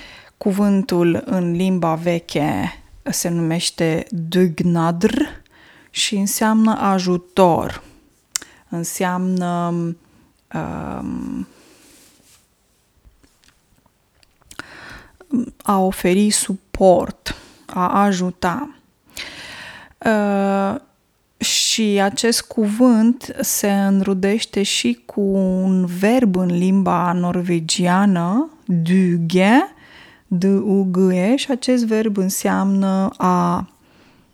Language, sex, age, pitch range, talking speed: Romanian, female, 20-39, 180-225 Hz, 65 wpm